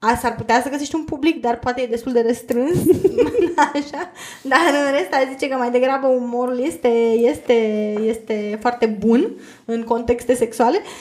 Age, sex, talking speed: 20-39, female, 160 wpm